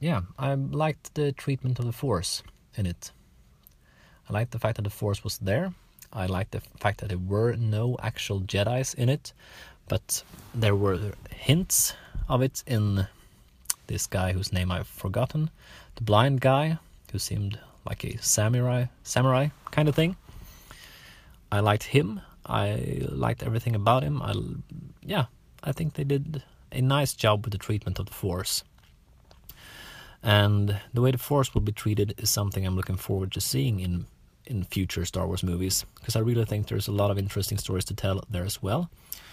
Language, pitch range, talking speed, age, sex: Swedish, 95-125 Hz, 175 wpm, 30-49, male